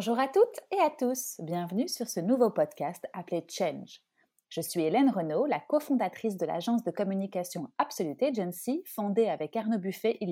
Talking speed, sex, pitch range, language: 175 wpm, female, 175-235 Hz, French